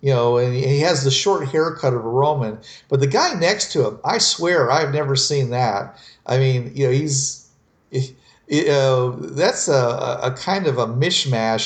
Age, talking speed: 50-69, 190 wpm